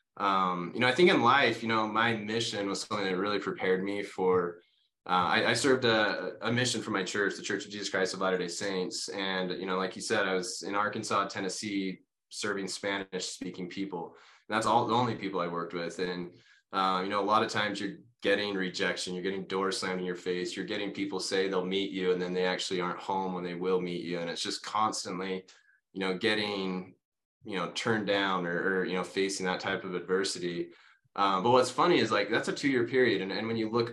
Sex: male